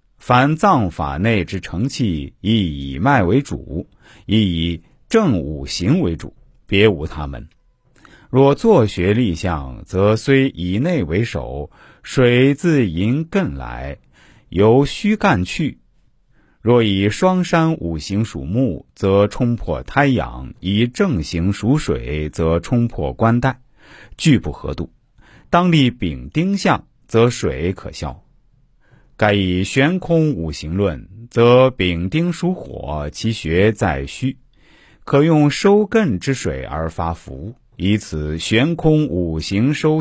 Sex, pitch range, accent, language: male, 85-140 Hz, native, Chinese